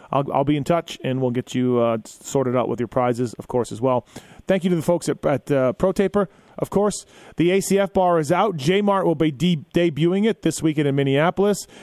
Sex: male